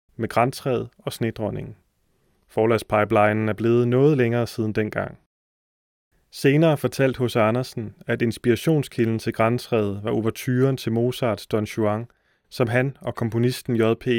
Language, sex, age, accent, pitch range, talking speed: Danish, male, 30-49, native, 110-130 Hz, 125 wpm